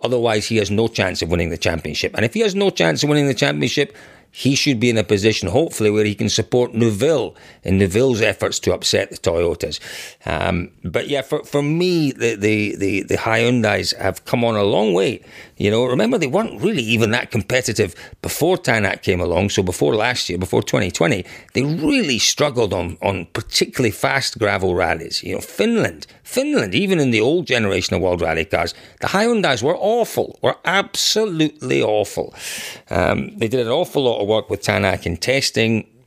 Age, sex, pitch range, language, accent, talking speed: 40-59, male, 95-130 Hz, Greek, British, 190 wpm